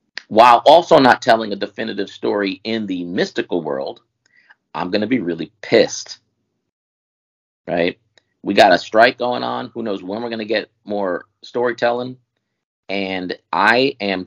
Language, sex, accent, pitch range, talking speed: English, male, American, 90-110 Hz, 150 wpm